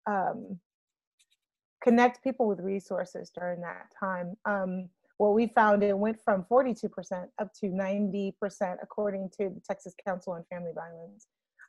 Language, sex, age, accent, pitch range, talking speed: English, female, 30-49, American, 185-220 Hz, 140 wpm